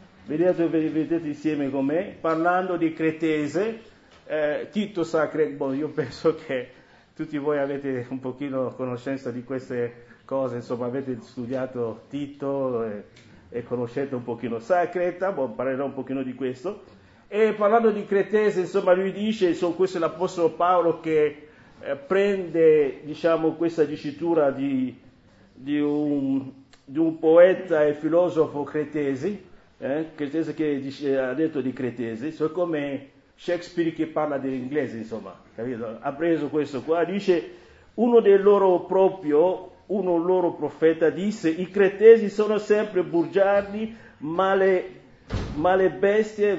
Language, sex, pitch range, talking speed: English, male, 135-180 Hz, 125 wpm